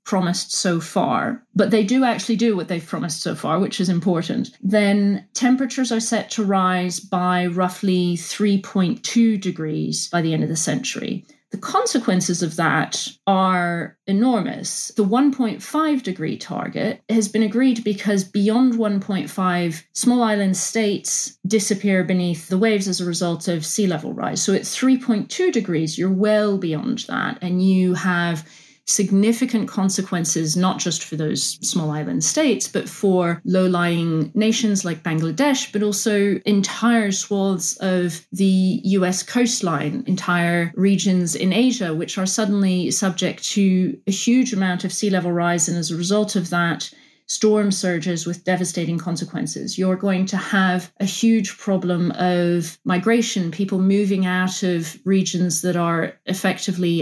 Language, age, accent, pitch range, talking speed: English, 30-49, British, 175-215 Hz, 150 wpm